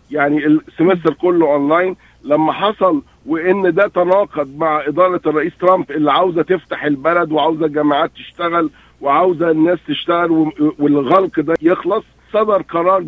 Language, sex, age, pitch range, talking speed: Arabic, male, 50-69, 160-210 Hz, 130 wpm